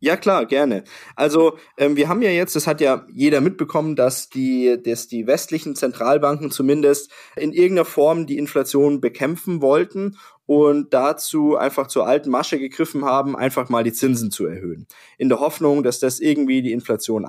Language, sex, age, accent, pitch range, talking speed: German, male, 20-39, German, 135-180 Hz, 170 wpm